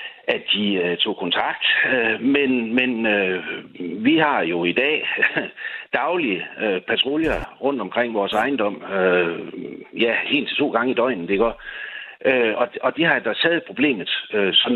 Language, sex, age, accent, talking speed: Danish, male, 60-79, native, 165 wpm